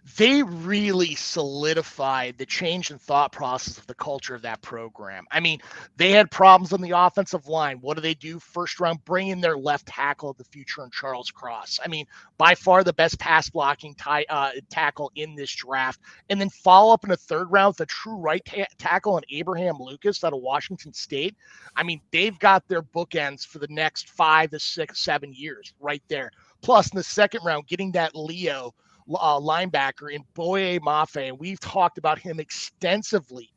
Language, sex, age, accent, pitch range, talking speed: English, male, 30-49, American, 145-185 Hz, 195 wpm